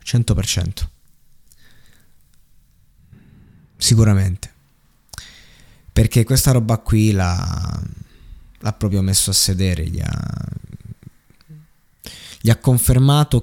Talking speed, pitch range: 75 wpm, 95-110 Hz